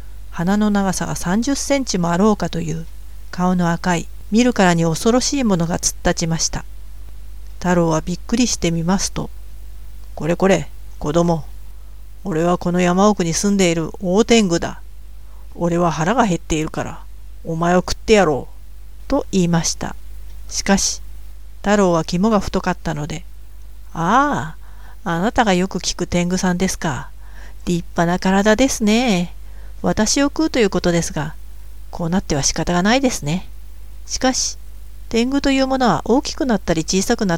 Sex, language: female, Japanese